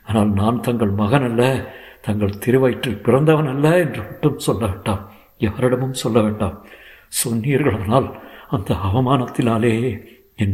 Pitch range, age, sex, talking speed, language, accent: 105-130 Hz, 60-79, male, 110 wpm, Tamil, native